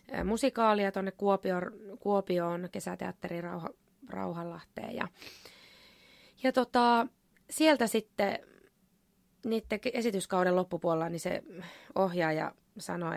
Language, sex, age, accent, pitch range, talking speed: Finnish, female, 20-39, native, 175-205 Hz, 85 wpm